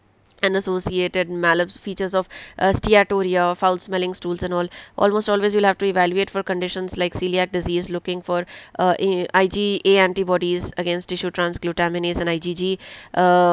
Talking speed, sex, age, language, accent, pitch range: 150 wpm, female, 20-39, English, Indian, 175-195 Hz